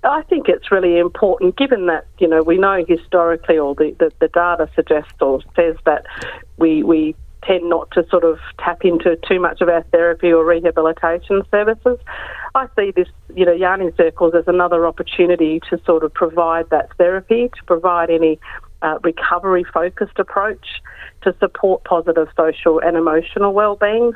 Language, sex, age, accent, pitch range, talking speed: English, female, 50-69, Australian, 160-195 Hz, 165 wpm